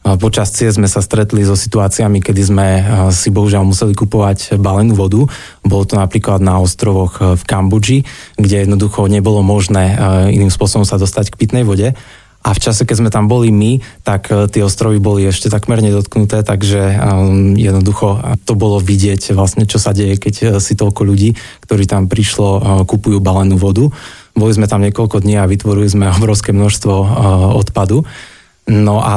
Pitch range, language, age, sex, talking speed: 100-110 Hz, Slovak, 20-39, male, 165 wpm